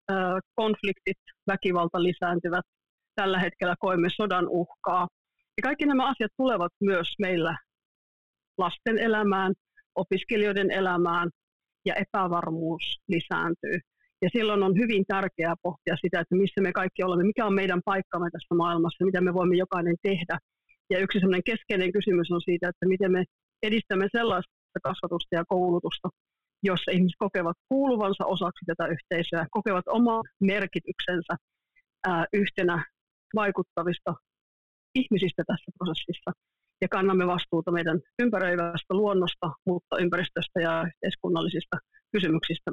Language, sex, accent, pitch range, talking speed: Finnish, female, native, 175-200 Hz, 120 wpm